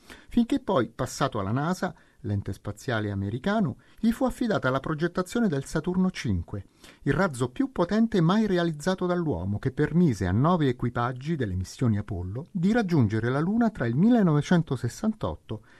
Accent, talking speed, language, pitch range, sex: native, 145 wpm, Italian, 115-180 Hz, male